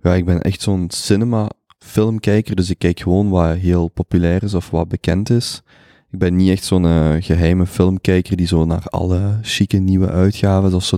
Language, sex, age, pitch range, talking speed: Dutch, male, 20-39, 85-105 Hz, 195 wpm